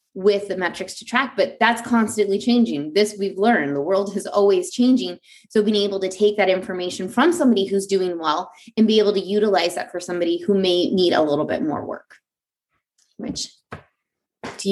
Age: 20-39